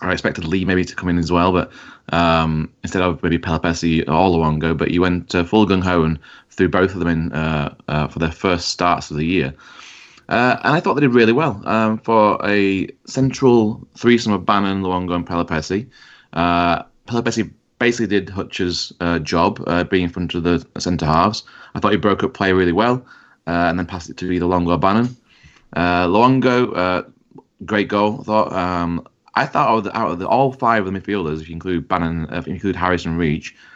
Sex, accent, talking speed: male, British, 210 wpm